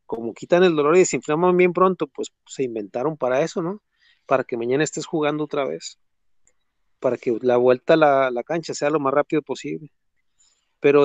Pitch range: 135-180 Hz